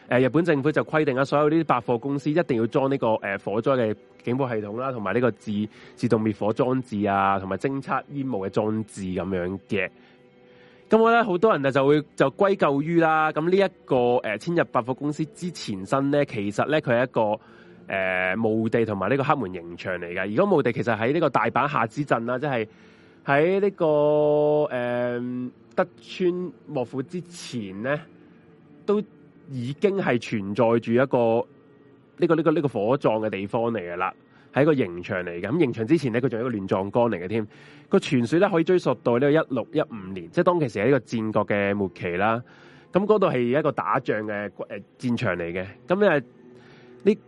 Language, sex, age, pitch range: Chinese, male, 20-39, 110-150 Hz